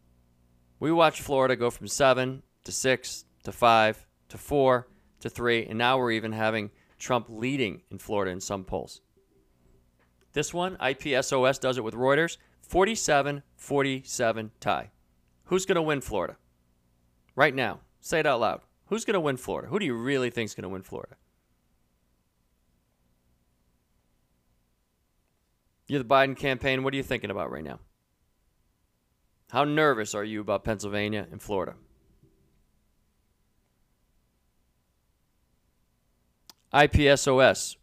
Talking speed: 130 wpm